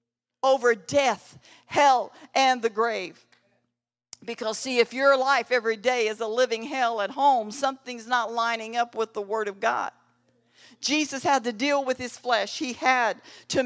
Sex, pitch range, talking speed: female, 205-250 Hz, 165 wpm